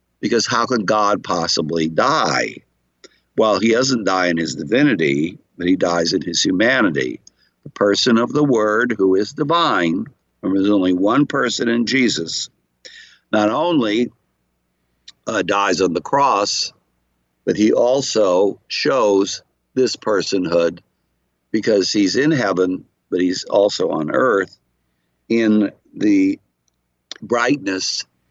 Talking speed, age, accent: 125 wpm, 60-79, American